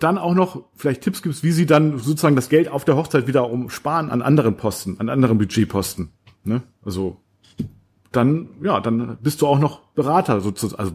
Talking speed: 185 wpm